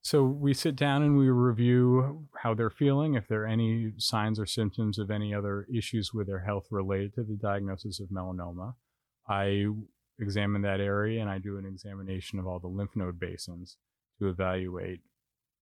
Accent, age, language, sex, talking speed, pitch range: American, 30-49, English, male, 180 wpm, 95-110 Hz